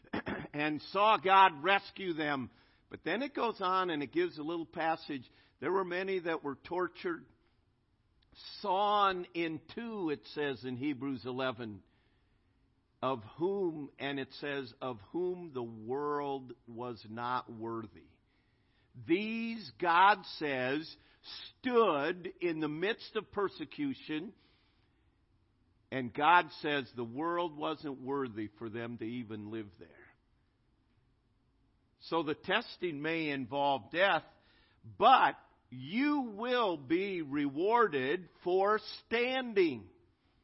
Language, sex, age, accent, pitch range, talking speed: English, male, 50-69, American, 125-185 Hz, 115 wpm